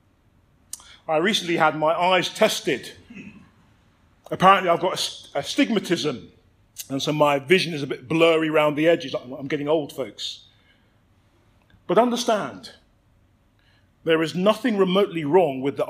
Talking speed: 130 wpm